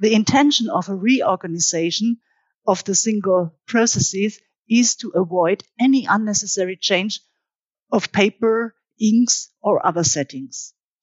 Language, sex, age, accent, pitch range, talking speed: English, female, 50-69, German, 180-230 Hz, 115 wpm